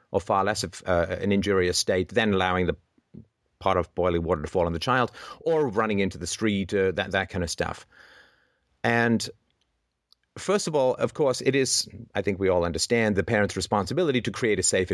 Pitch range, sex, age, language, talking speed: 90-120 Hz, male, 40-59, English, 205 wpm